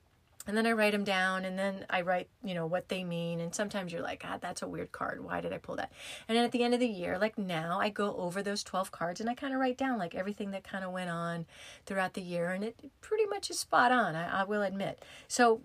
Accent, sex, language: American, female, English